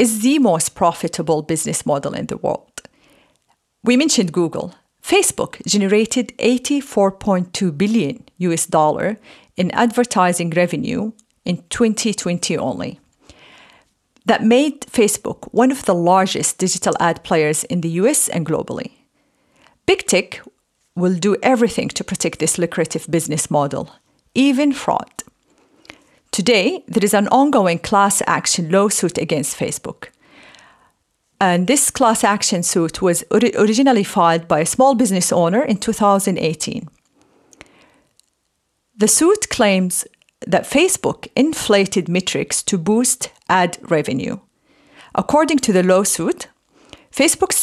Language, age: English, 40-59